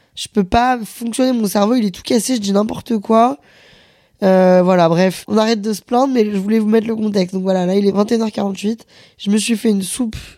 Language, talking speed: French, 235 wpm